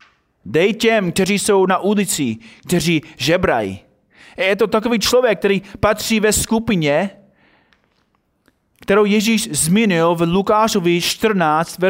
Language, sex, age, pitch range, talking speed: Czech, male, 30-49, 165-210 Hz, 110 wpm